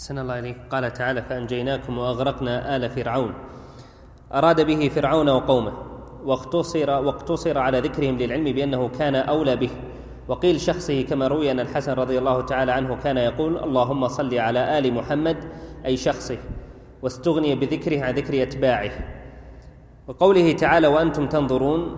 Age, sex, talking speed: 30-49, male, 135 wpm